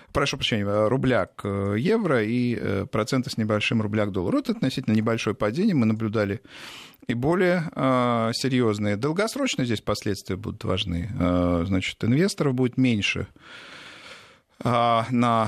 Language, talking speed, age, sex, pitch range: Russian, 110 wpm, 50-69, male, 105-145 Hz